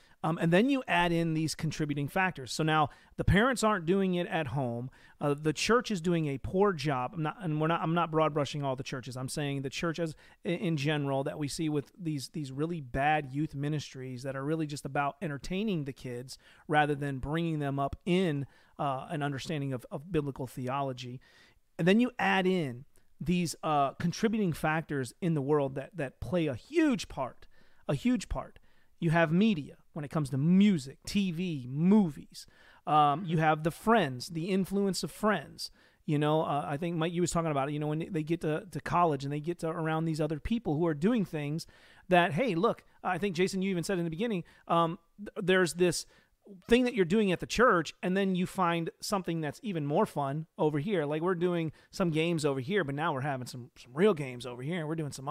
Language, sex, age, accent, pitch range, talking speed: English, male, 40-59, American, 145-180 Hz, 220 wpm